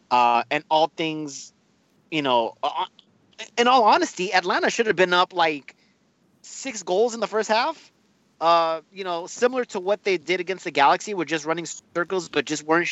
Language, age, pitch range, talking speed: English, 30-49, 125-180 Hz, 185 wpm